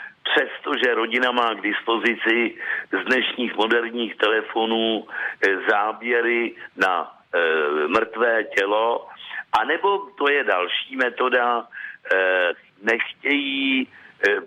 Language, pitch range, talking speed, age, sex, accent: Czech, 105-145 Hz, 95 wpm, 60-79, male, native